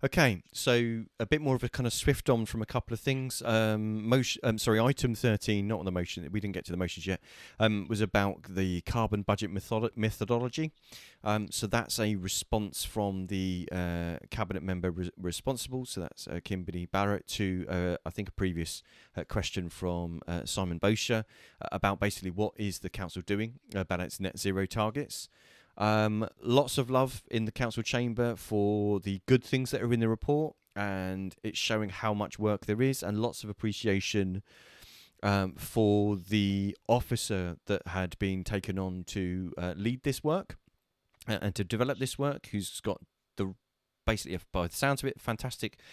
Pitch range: 95-115 Hz